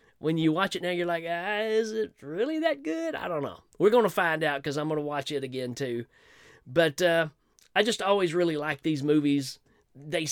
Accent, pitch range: American, 140-215 Hz